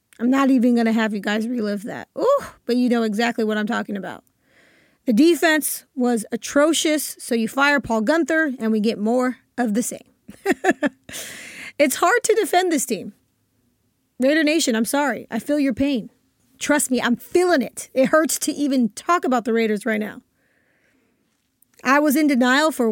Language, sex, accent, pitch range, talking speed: English, female, American, 230-285 Hz, 180 wpm